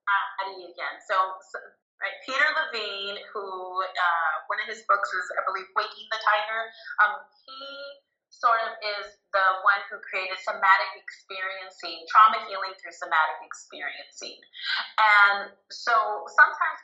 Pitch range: 190-265 Hz